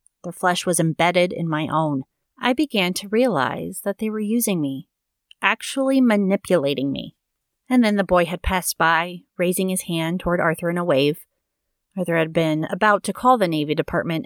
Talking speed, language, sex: 180 wpm, English, female